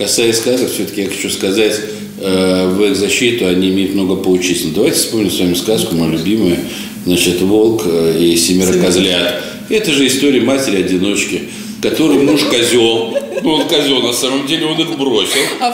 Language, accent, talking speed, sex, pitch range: Russian, native, 160 wpm, male, 105-170 Hz